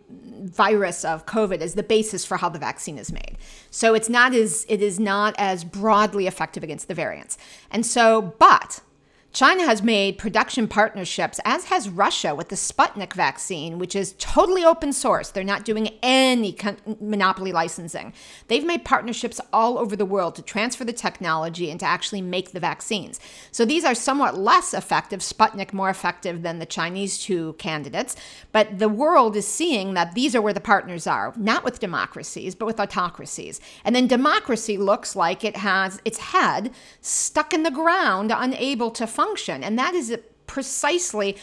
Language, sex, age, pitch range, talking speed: English, female, 40-59, 195-260 Hz, 175 wpm